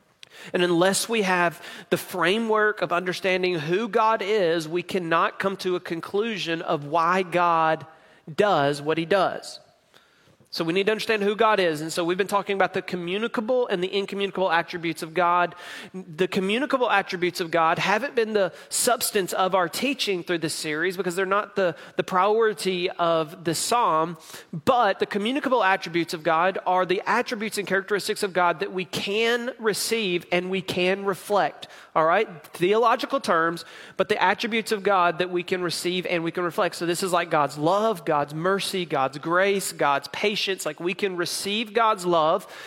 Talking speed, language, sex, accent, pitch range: 175 wpm, English, male, American, 170-210 Hz